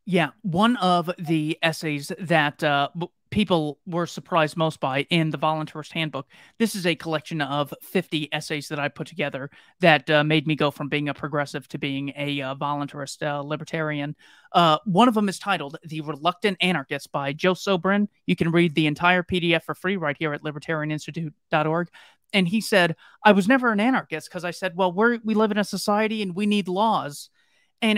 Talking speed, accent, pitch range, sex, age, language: 190 wpm, American, 150-195 Hz, male, 30-49, English